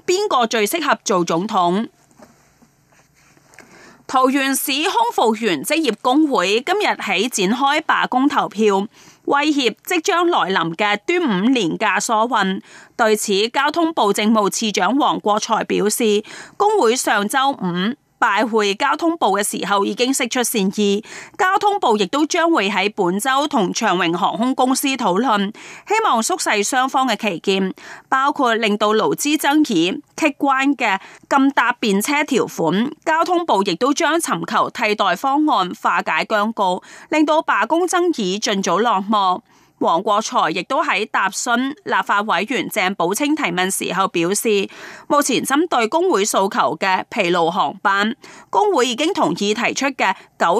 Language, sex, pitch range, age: Chinese, female, 205-300 Hz, 30-49